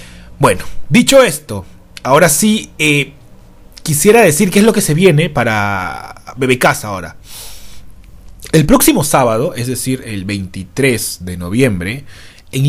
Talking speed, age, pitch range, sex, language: 130 wpm, 30-49, 105-155 Hz, male, Spanish